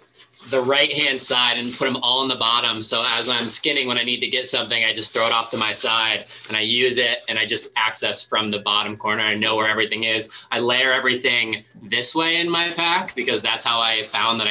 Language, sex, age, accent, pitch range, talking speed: English, male, 20-39, American, 105-120 Hz, 250 wpm